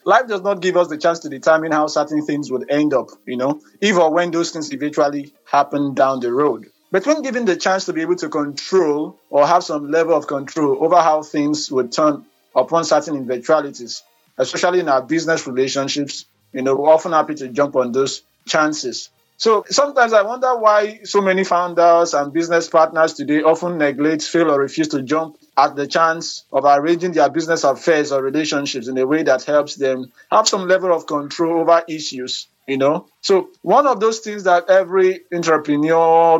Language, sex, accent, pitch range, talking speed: English, male, Nigerian, 145-175 Hz, 195 wpm